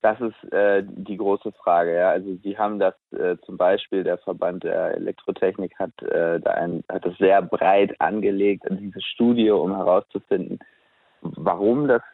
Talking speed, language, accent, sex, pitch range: 165 wpm, German, German, male, 95-110 Hz